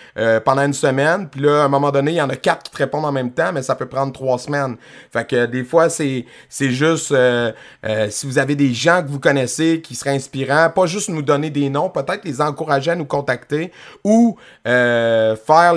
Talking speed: 235 wpm